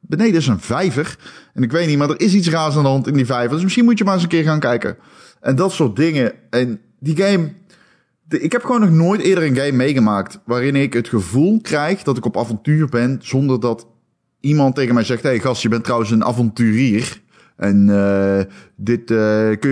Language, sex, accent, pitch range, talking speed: Dutch, male, Dutch, 105-150 Hz, 230 wpm